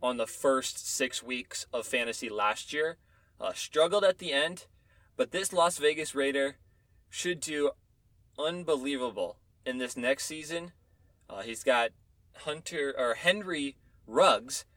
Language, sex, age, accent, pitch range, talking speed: English, male, 20-39, American, 115-160 Hz, 135 wpm